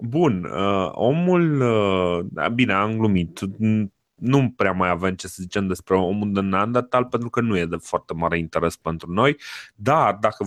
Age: 20-39